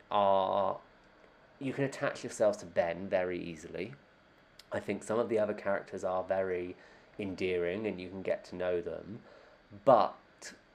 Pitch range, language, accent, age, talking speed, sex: 95-130 Hz, English, British, 30-49, 150 wpm, male